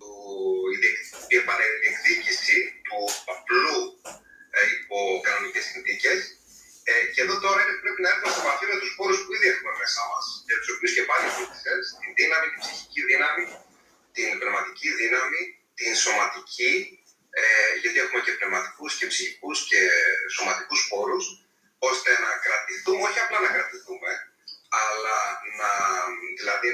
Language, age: Greek, 30-49